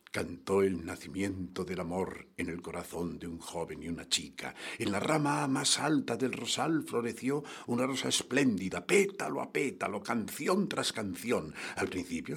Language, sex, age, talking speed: English, male, 60-79, 160 wpm